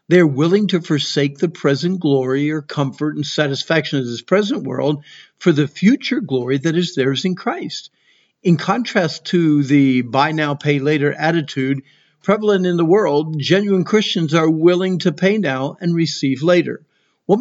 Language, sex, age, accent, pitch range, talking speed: English, male, 50-69, American, 145-180 Hz, 165 wpm